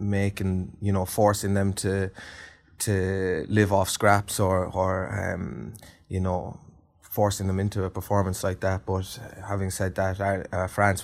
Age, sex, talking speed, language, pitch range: 20-39, male, 150 wpm, English, 95-105 Hz